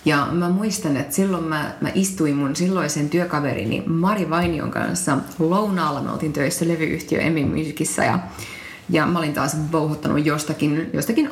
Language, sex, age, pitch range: Finnish, female, 30-49, 160-205 Hz